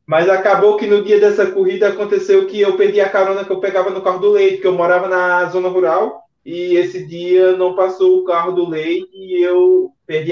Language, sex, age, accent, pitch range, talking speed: Portuguese, male, 20-39, Brazilian, 140-190 Hz, 220 wpm